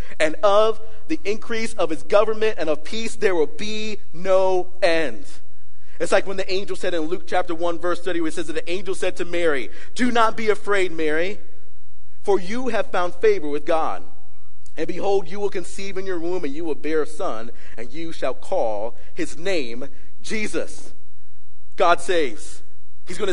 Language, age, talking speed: English, 40-59, 190 wpm